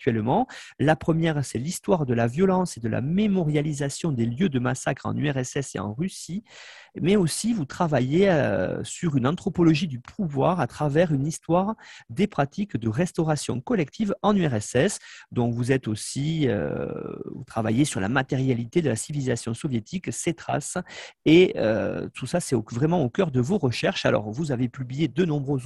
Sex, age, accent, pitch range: male, 40-59, French, 125-170 Hz